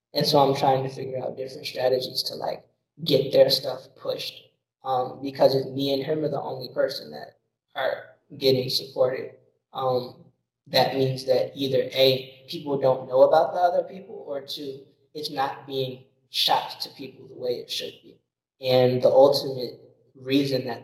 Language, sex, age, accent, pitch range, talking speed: English, male, 20-39, American, 130-185 Hz, 175 wpm